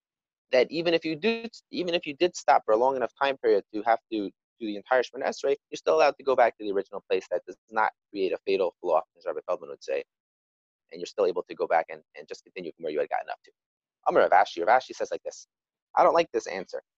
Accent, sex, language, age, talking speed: American, male, English, 30-49, 270 wpm